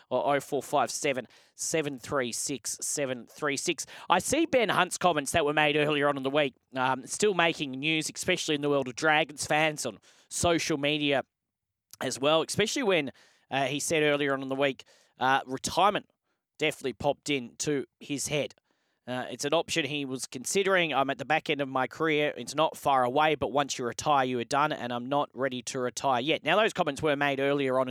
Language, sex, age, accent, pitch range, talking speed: English, male, 20-39, Australian, 130-160 Hz, 190 wpm